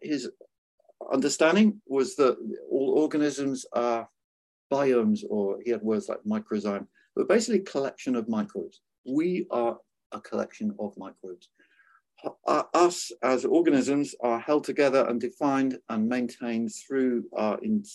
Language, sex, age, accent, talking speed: English, male, 50-69, British, 125 wpm